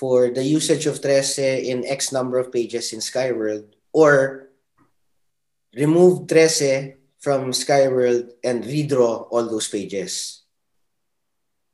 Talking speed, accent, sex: 110 wpm, native, male